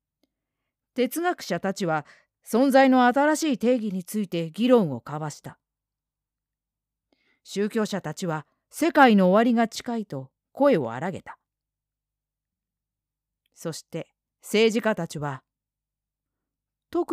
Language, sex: Japanese, female